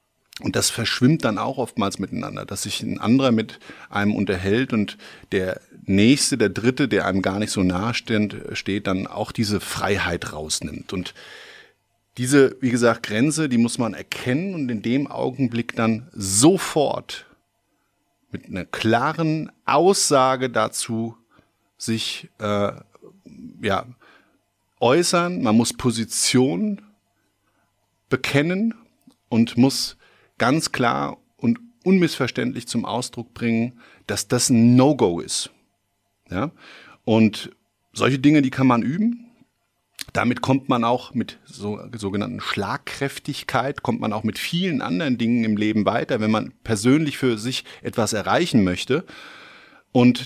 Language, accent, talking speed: German, German, 125 wpm